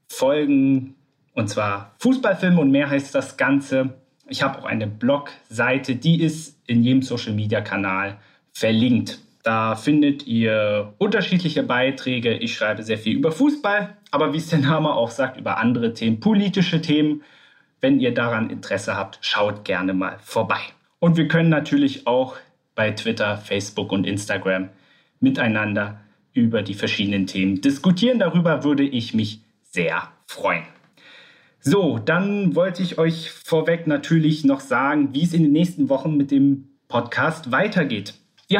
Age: 30-49